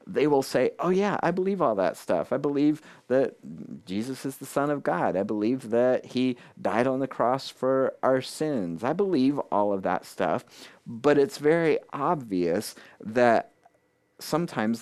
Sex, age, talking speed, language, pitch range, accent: male, 40-59, 170 wpm, English, 105-140 Hz, American